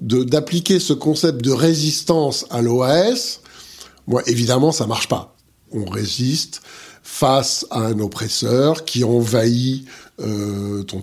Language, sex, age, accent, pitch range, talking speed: French, male, 50-69, French, 115-155 Hz, 130 wpm